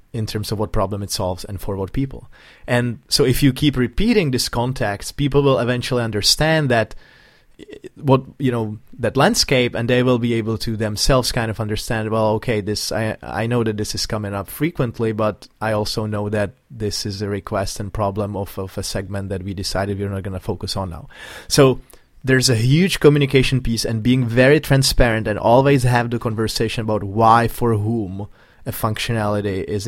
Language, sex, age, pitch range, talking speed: English, male, 20-39, 105-125 Hz, 195 wpm